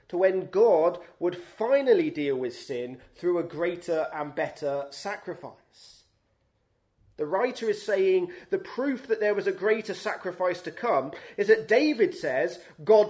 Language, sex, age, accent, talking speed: English, male, 30-49, British, 150 wpm